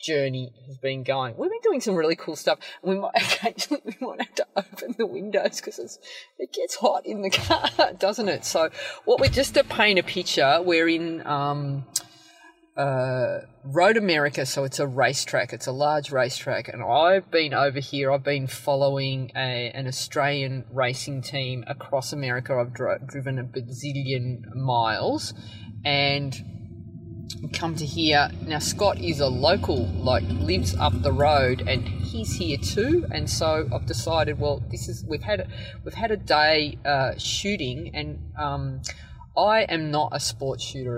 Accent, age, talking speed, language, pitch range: Australian, 30-49, 165 wpm, English, 125-165 Hz